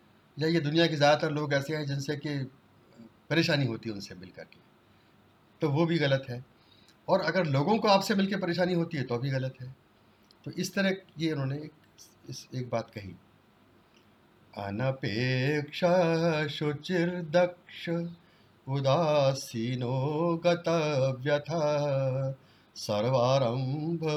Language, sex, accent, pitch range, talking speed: Hindi, male, native, 130-170 Hz, 110 wpm